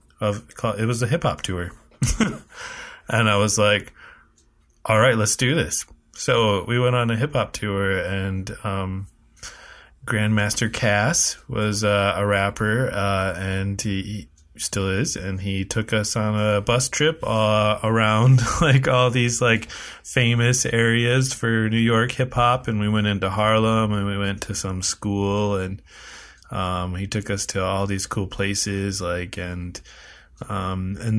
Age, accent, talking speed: 20-39, American, 155 wpm